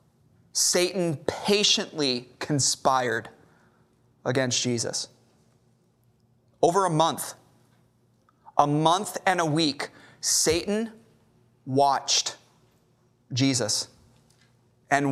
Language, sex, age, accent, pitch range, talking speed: English, male, 30-49, American, 125-170 Hz, 70 wpm